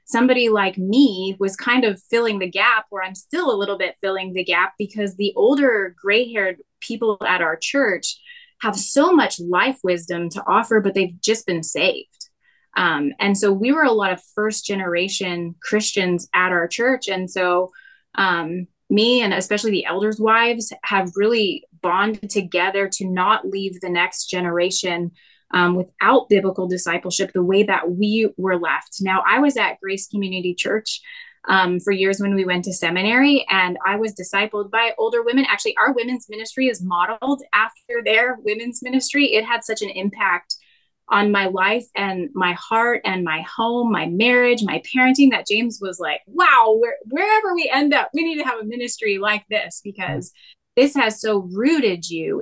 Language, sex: English, female